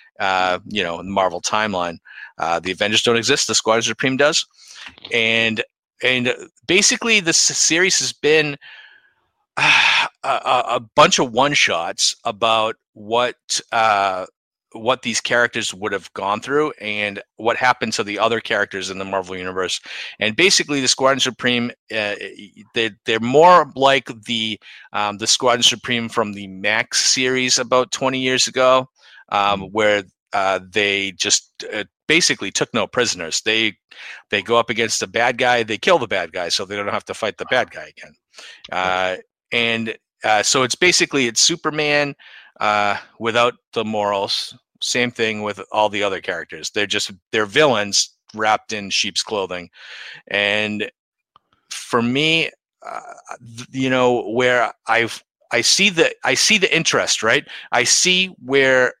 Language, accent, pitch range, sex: English, American, 105-130 Hz, male